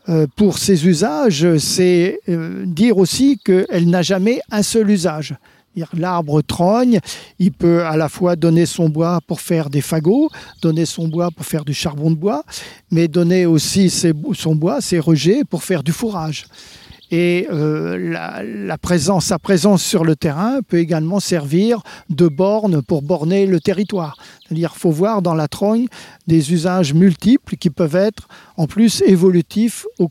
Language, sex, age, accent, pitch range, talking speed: French, male, 50-69, French, 165-195 Hz, 165 wpm